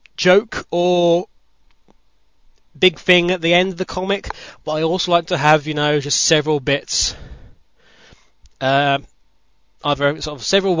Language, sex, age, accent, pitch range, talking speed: English, male, 20-39, British, 130-165 Hz, 150 wpm